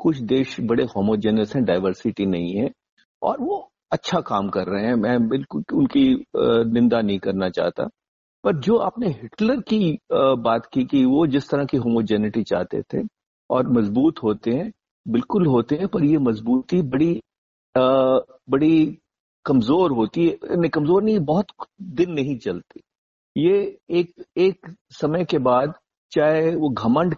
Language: Hindi